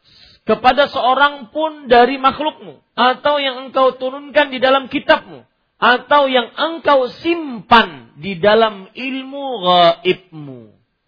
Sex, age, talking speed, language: male, 40-59, 110 wpm, Malay